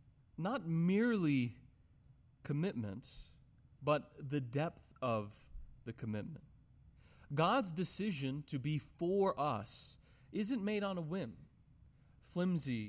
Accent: American